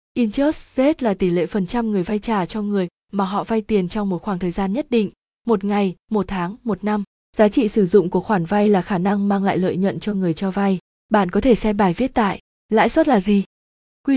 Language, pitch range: Vietnamese, 190-225 Hz